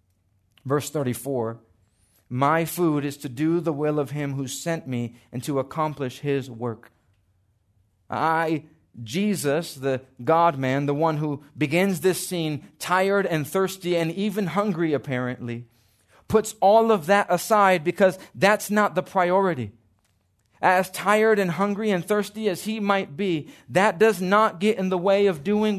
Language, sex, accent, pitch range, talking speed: English, male, American, 120-185 Hz, 155 wpm